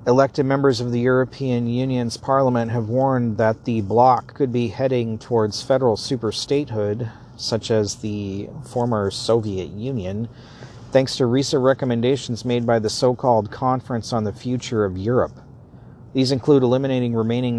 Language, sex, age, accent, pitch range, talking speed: English, male, 40-59, American, 110-125 Hz, 145 wpm